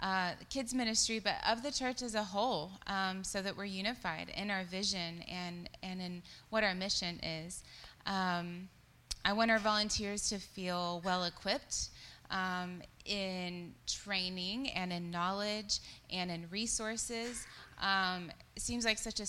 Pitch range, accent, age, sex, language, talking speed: 175-210 Hz, American, 20-39, female, English, 150 wpm